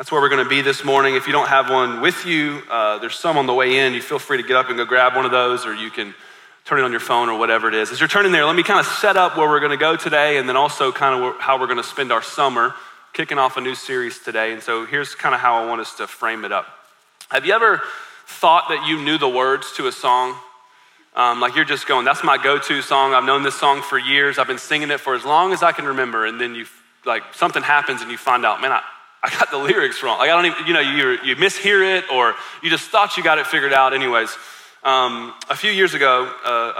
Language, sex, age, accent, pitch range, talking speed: English, male, 30-49, American, 125-155 Hz, 275 wpm